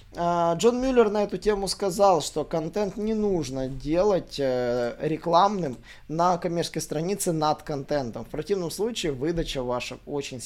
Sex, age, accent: male, 20-39, native